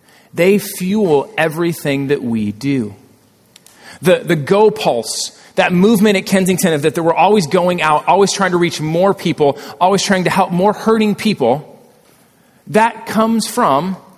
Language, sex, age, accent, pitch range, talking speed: English, male, 30-49, American, 140-185 Hz, 150 wpm